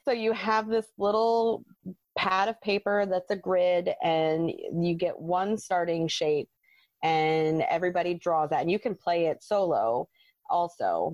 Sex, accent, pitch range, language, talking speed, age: female, American, 160-190 Hz, English, 150 wpm, 30-49